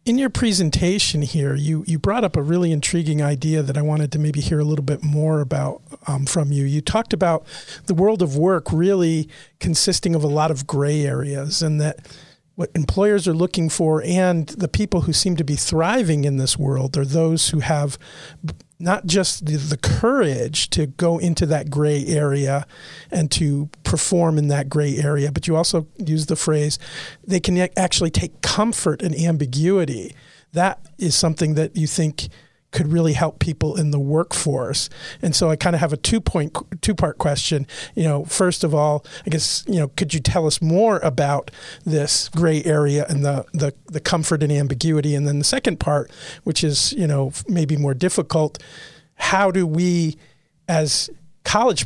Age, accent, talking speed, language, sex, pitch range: 40-59, American, 185 wpm, English, male, 145-170 Hz